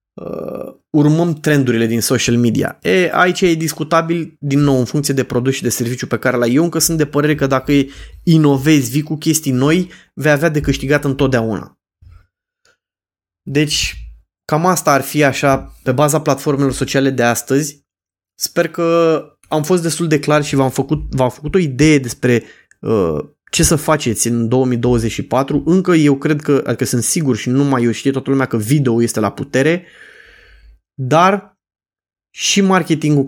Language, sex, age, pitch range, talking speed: Romanian, male, 20-39, 125-160 Hz, 170 wpm